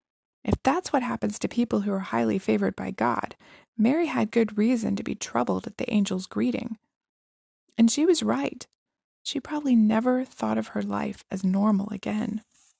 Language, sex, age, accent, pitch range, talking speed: English, female, 20-39, American, 210-255 Hz, 175 wpm